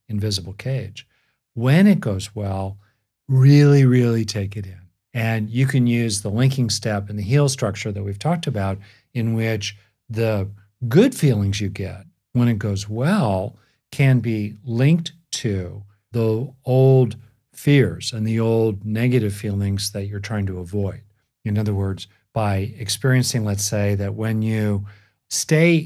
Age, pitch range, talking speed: 50-69, 100-130 Hz, 150 wpm